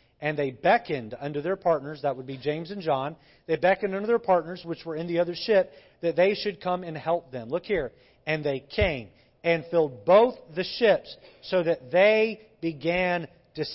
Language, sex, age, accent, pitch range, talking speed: English, male, 40-59, American, 140-185 Hz, 195 wpm